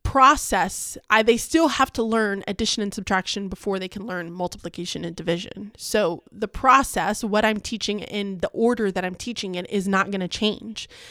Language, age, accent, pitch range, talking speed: English, 20-39, American, 195-235 Hz, 190 wpm